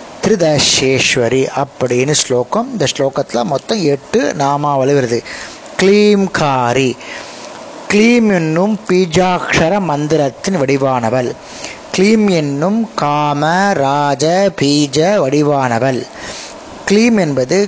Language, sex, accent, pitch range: Tamil, male, native, 140-195 Hz